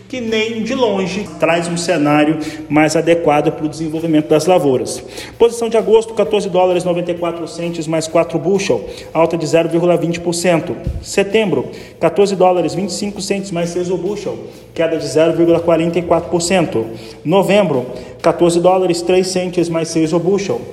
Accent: Brazilian